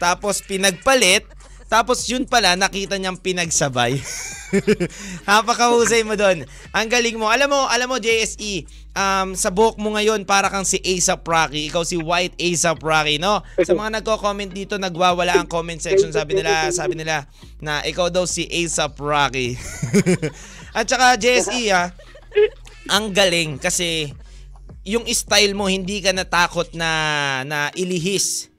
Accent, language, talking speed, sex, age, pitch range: native, Filipino, 145 wpm, male, 20-39, 150-200 Hz